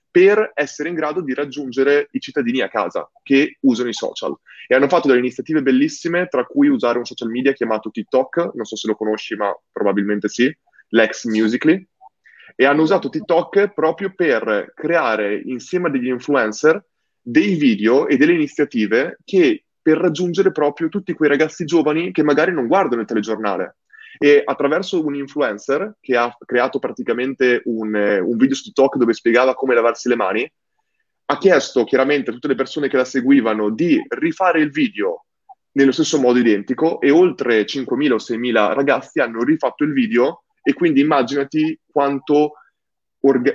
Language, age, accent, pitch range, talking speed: Italian, 20-39, native, 125-185 Hz, 165 wpm